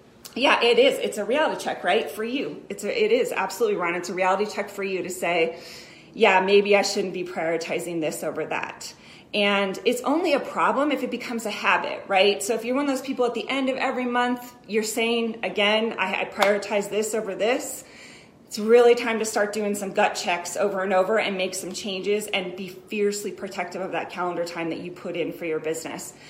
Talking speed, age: 220 wpm, 30-49